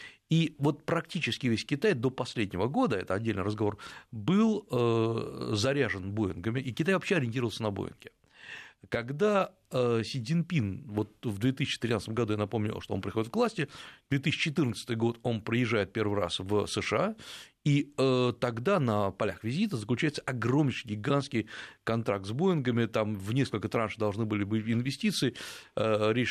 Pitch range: 110-150 Hz